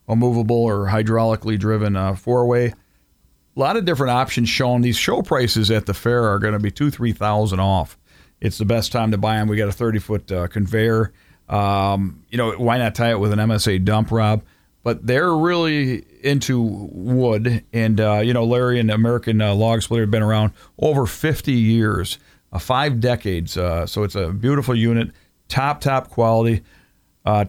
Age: 50-69